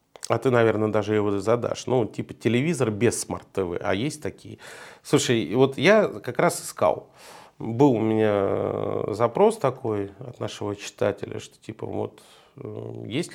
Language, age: Russian, 40-59